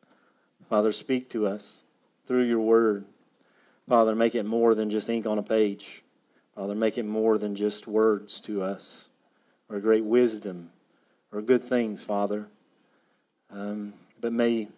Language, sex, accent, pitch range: English, male, American, 105-115 Hz